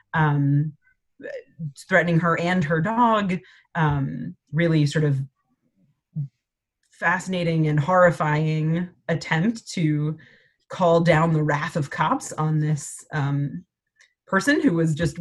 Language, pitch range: English, 150-175 Hz